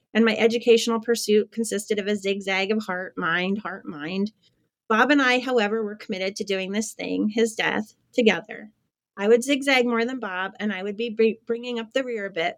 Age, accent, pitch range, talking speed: 30-49, American, 200-235 Hz, 200 wpm